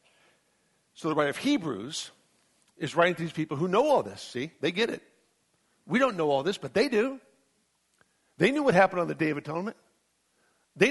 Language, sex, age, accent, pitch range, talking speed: English, male, 60-79, American, 150-195 Hz, 200 wpm